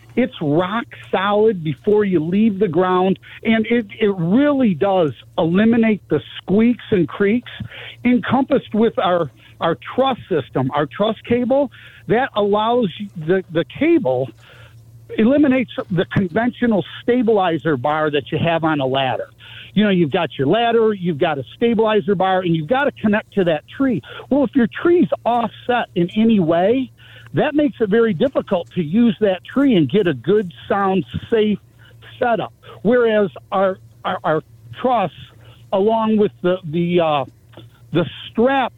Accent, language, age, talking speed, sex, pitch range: American, English, 50-69, 150 wpm, male, 155-225 Hz